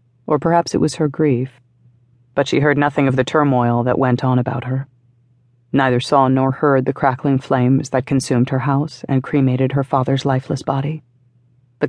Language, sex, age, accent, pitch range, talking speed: English, female, 40-59, American, 125-145 Hz, 180 wpm